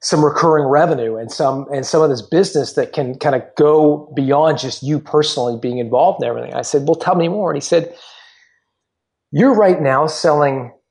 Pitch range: 135-180 Hz